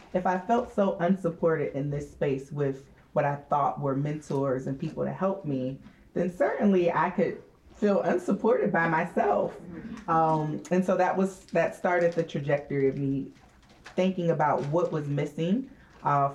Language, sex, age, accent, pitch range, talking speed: English, female, 30-49, American, 135-175 Hz, 160 wpm